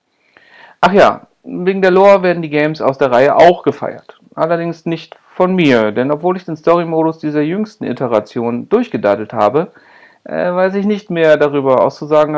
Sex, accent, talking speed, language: male, German, 165 wpm, German